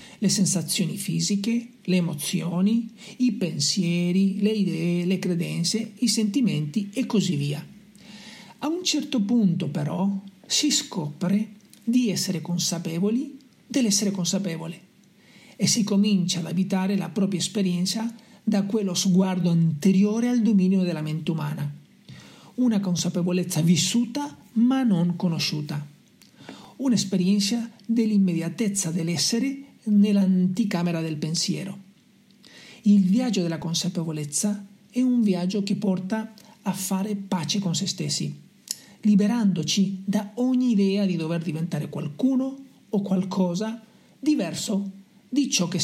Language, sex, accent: Italian, male, native